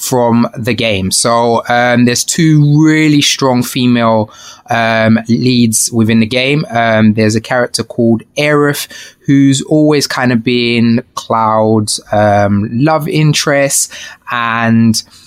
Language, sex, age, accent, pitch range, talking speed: English, male, 20-39, British, 110-130 Hz, 120 wpm